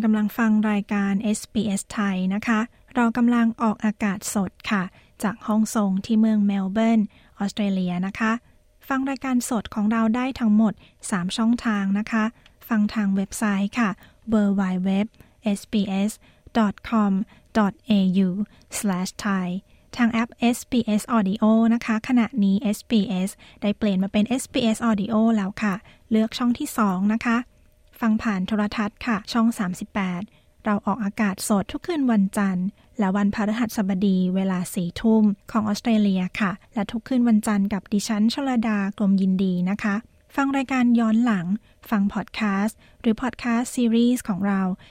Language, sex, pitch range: Thai, female, 200-230 Hz